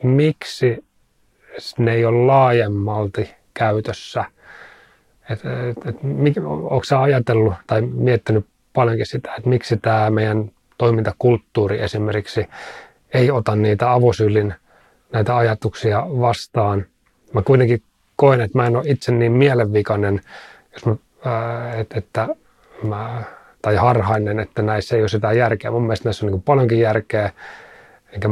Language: Finnish